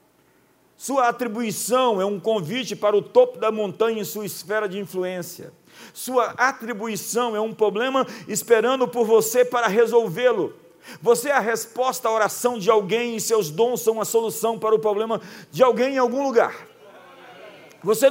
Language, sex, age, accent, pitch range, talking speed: Portuguese, male, 50-69, Brazilian, 200-245 Hz, 160 wpm